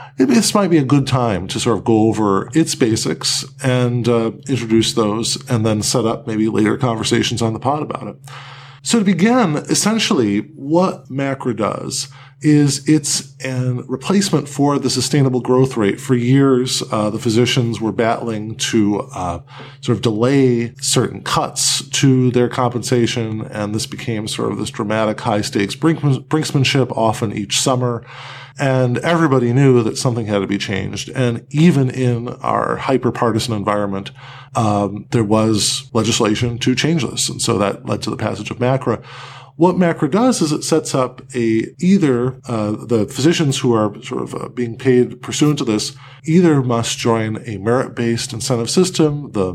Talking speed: 165 wpm